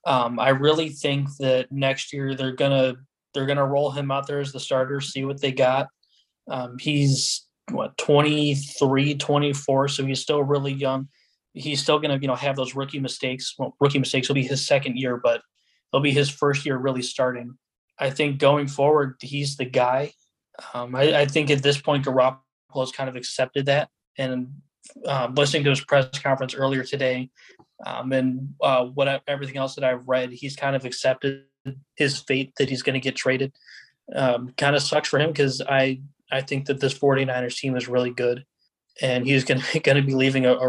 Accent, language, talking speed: American, English, 195 wpm